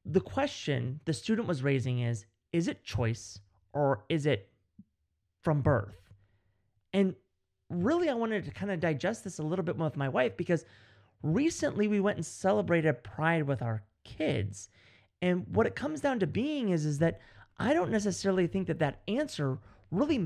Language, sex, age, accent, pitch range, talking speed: English, male, 30-49, American, 110-175 Hz, 175 wpm